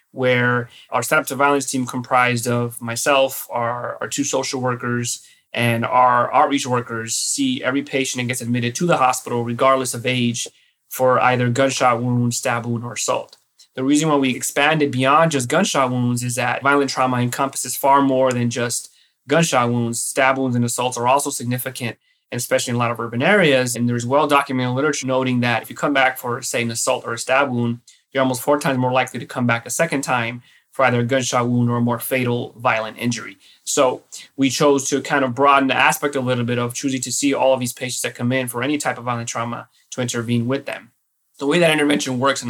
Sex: male